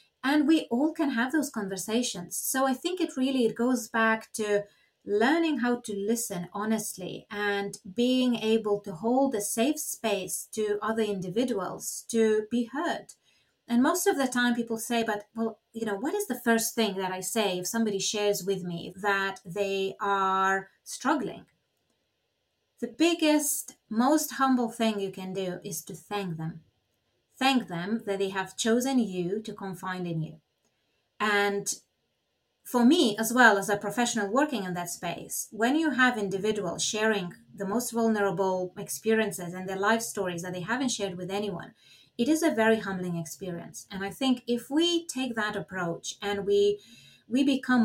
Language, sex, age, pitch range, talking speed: English, female, 30-49, 195-245 Hz, 170 wpm